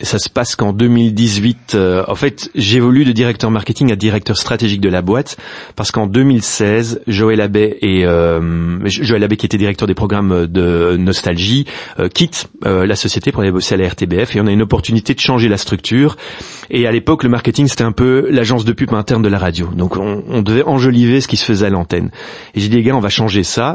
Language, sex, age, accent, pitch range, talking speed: French, male, 30-49, French, 95-115 Hz, 215 wpm